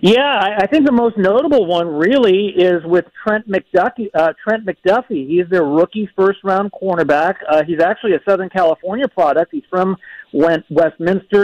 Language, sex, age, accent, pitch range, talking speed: English, male, 50-69, American, 155-195 Hz, 165 wpm